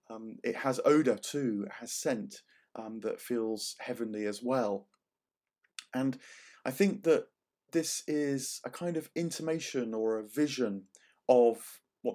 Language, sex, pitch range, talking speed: English, male, 110-130 Hz, 145 wpm